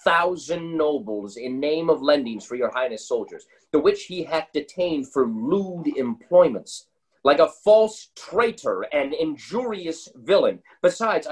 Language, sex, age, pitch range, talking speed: English, male, 30-49, 150-235 Hz, 140 wpm